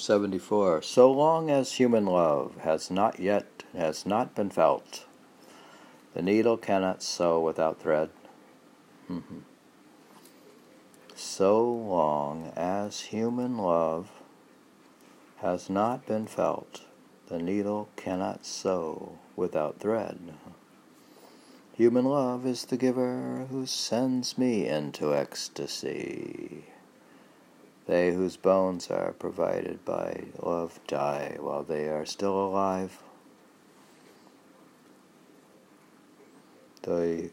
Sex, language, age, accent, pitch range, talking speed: male, English, 60-79, American, 80-125 Hz, 95 wpm